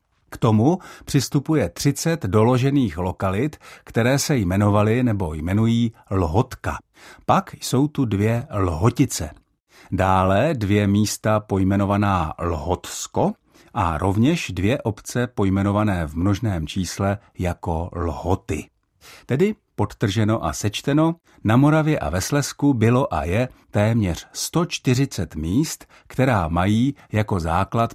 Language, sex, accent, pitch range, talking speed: Czech, male, native, 95-120 Hz, 105 wpm